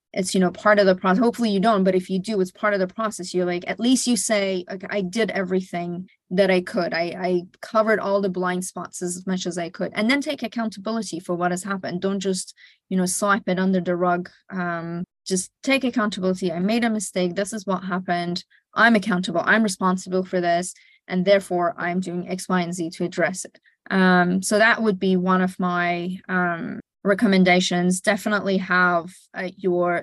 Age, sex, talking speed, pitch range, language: 20-39, female, 210 wpm, 180-200 Hz, English